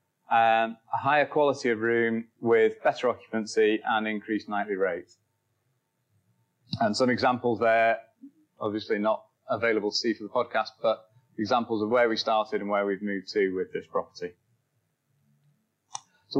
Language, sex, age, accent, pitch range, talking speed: English, male, 30-49, British, 110-135 Hz, 145 wpm